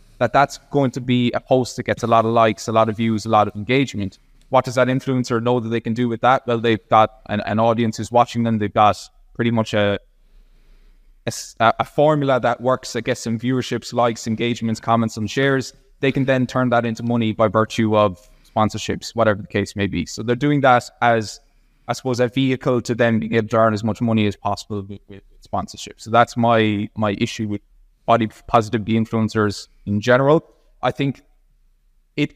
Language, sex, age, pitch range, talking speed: English, male, 20-39, 110-130 Hz, 205 wpm